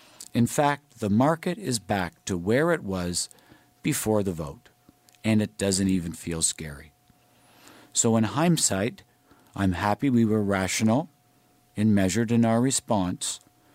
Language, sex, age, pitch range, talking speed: English, male, 50-69, 95-125 Hz, 140 wpm